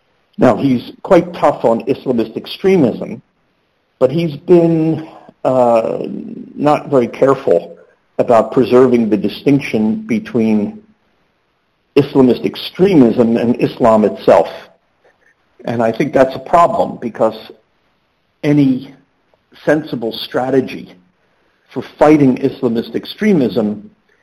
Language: English